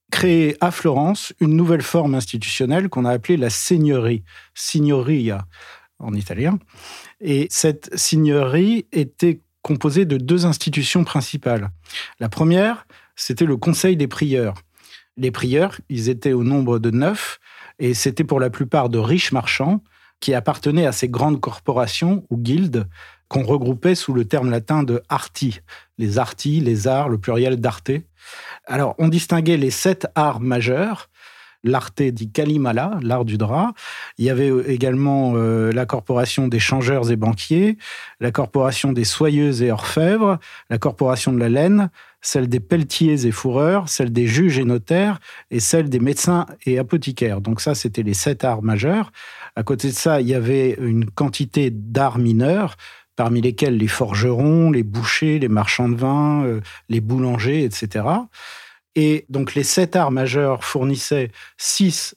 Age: 50-69